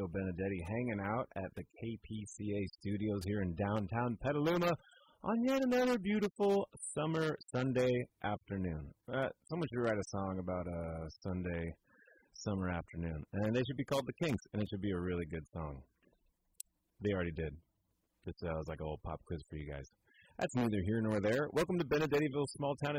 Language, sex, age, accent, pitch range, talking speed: English, male, 30-49, American, 90-125 Hz, 175 wpm